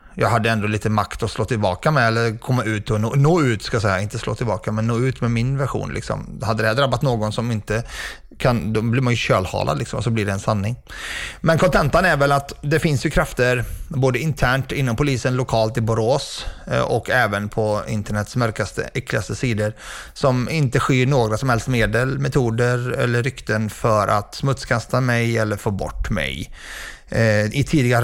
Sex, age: male, 30-49